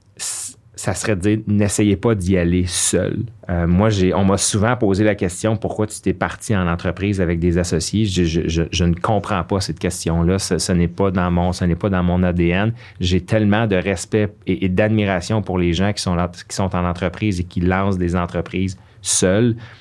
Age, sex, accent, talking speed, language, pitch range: 30-49, male, Canadian, 220 wpm, French, 90-105 Hz